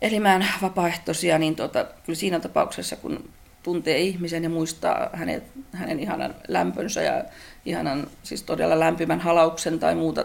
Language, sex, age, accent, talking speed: Finnish, female, 40-59, native, 135 wpm